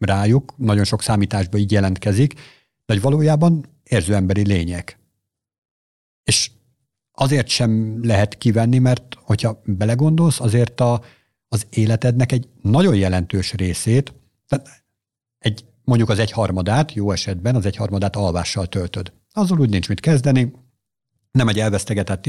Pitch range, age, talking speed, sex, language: 105-125 Hz, 50-69, 125 wpm, male, Hungarian